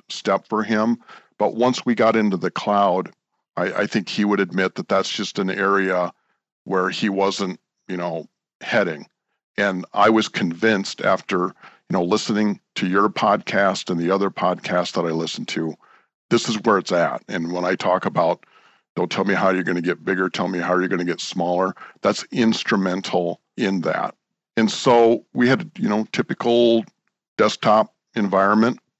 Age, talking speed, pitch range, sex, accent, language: 50-69, 180 wpm, 90-110 Hz, male, American, English